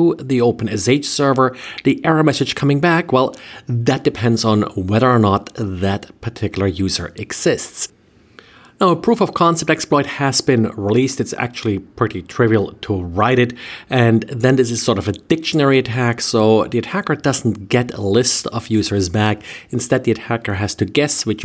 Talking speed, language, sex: 170 wpm, English, male